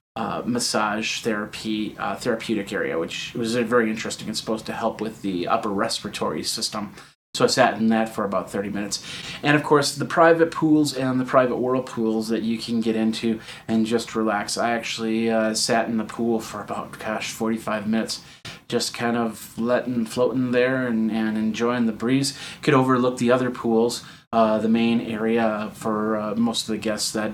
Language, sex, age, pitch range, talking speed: English, male, 30-49, 115-130 Hz, 190 wpm